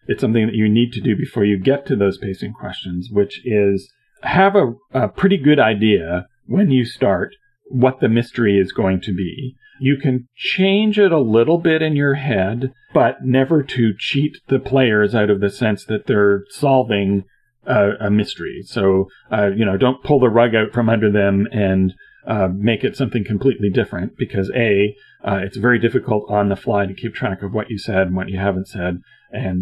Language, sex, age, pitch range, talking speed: English, male, 40-59, 95-130 Hz, 200 wpm